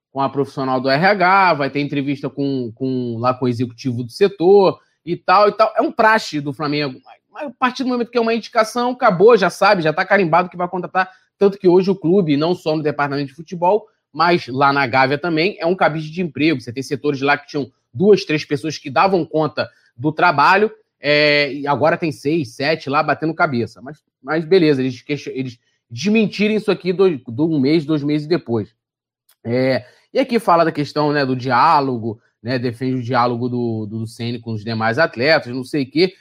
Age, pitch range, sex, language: 20-39, 135-185 Hz, male, Portuguese